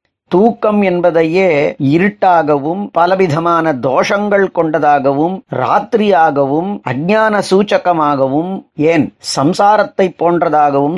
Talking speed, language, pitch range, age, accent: 65 wpm, Tamil, 160-195 Hz, 30-49, native